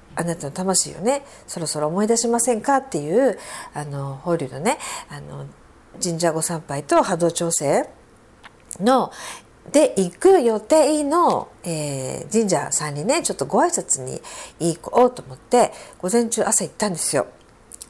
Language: Japanese